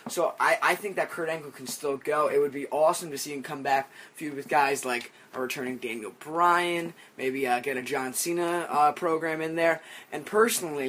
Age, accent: 20-39, American